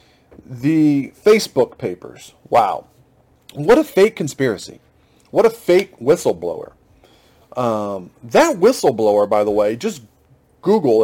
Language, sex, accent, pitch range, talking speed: English, male, American, 145-210 Hz, 110 wpm